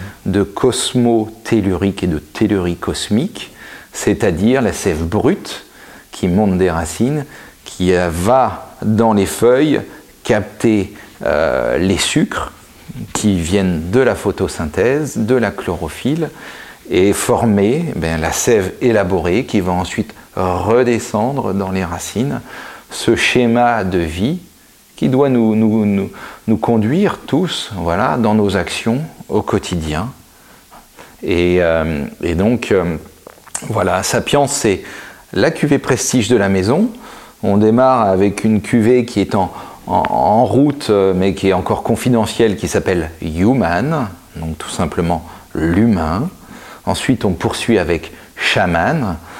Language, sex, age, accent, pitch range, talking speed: French, male, 40-59, French, 90-115 Hz, 125 wpm